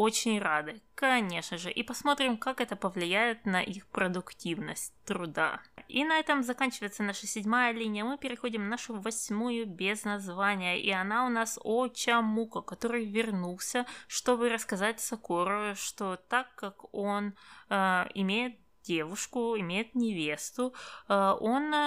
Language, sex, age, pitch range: Russian, female, 20-39, 190-240 Hz